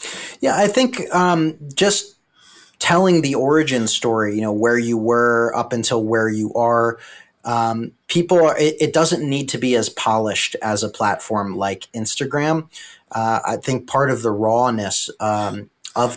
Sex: male